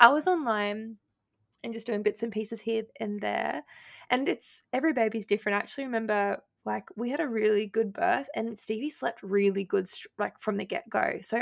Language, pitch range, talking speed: English, 200-230 Hz, 195 wpm